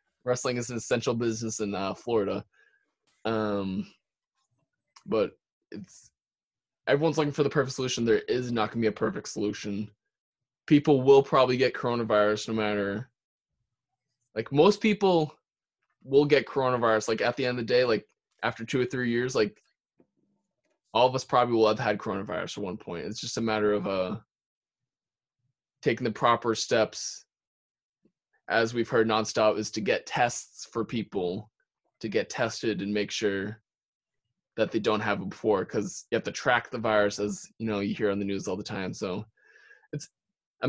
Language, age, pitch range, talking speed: English, 20-39, 110-135 Hz, 175 wpm